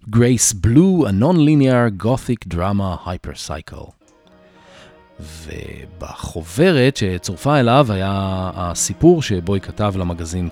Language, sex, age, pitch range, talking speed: English, male, 40-59, 90-125 Hz, 85 wpm